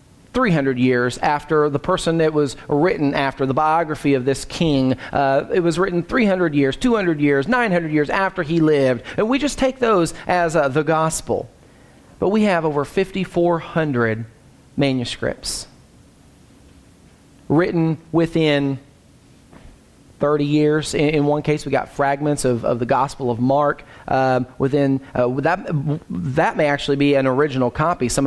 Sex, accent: male, American